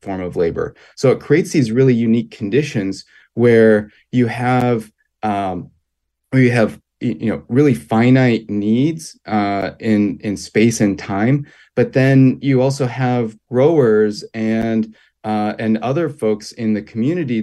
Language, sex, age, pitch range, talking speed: English, male, 30-49, 100-120 Hz, 145 wpm